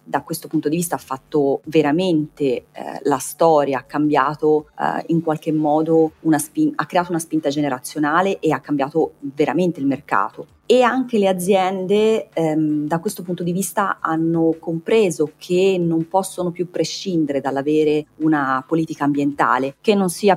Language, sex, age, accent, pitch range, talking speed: Italian, female, 30-49, native, 140-175 Hz, 160 wpm